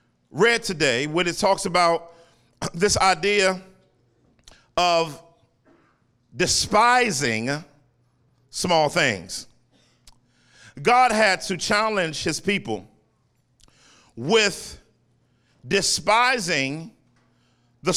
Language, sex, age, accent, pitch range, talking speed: English, male, 40-59, American, 150-205 Hz, 70 wpm